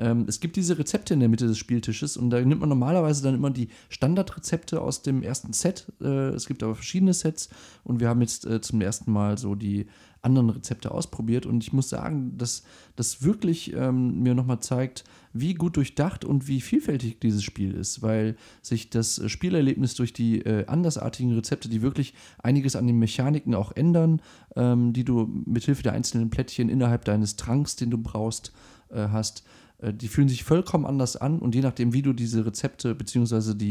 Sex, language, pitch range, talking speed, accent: male, German, 110-135 Hz, 180 wpm, German